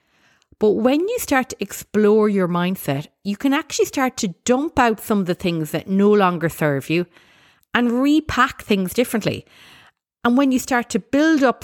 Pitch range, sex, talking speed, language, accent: 170-230 Hz, female, 180 wpm, English, Irish